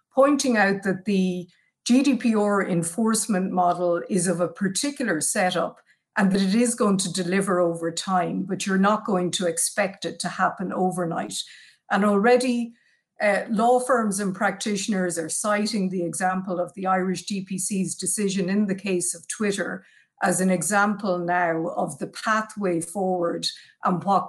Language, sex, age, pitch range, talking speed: English, female, 50-69, 180-215 Hz, 155 wpm